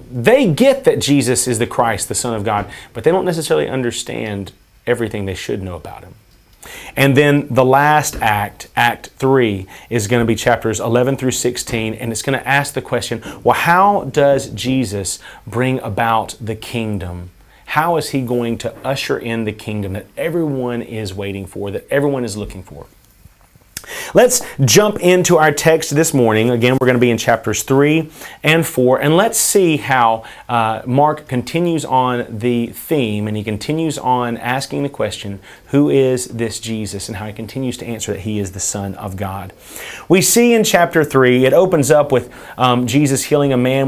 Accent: American